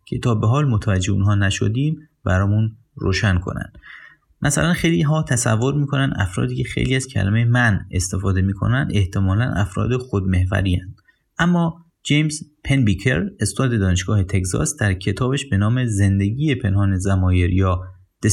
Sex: male